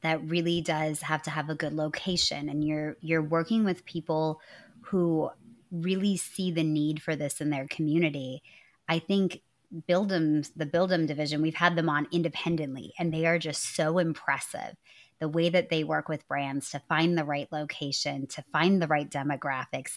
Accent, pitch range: American, 150-170 Hz